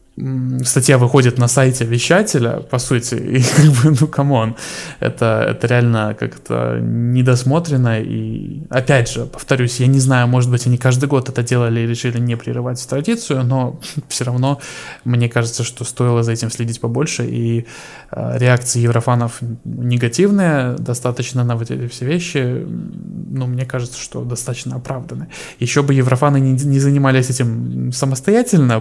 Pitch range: 120-135 Hz